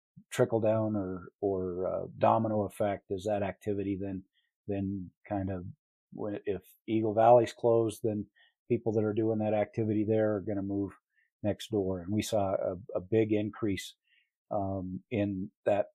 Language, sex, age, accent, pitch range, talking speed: English, male, 40-59, American, 100-115 Hz, 160 wpm